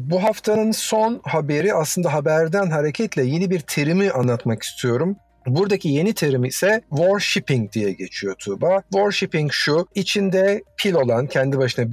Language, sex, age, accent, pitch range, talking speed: Turkish, male, 50-69, native, 130-165 Hz, 135 wpm